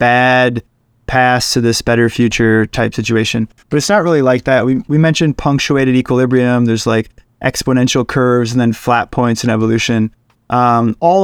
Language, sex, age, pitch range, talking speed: English, male, 20-39, 120-145 Hz, 165 wpm